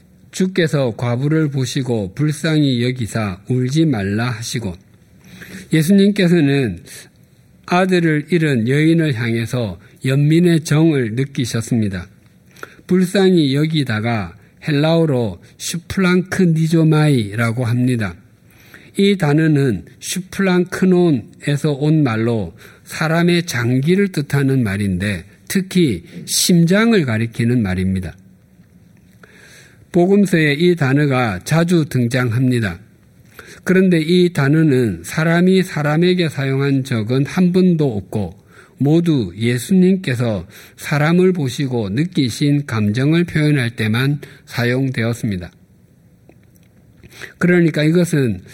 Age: 50-69